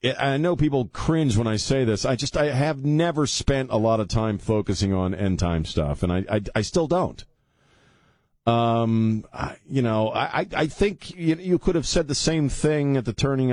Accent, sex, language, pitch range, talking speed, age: American, male, English, 90-125 Hz, 205 wpm, 50-69